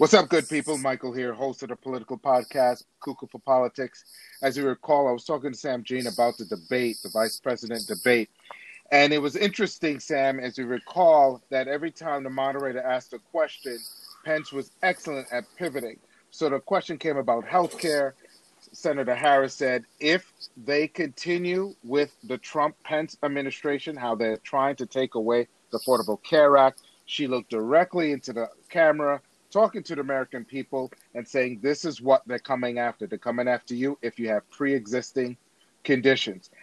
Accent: American